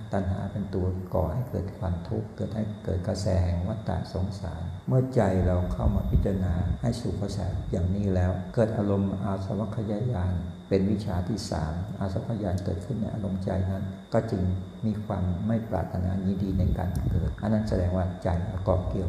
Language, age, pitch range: Thai, 60-79, 90-100 Hz